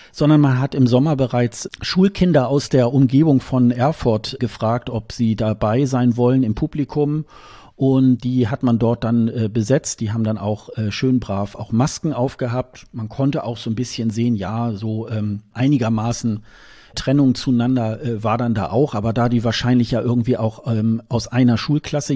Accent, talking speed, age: German, 180 wpm, 40-59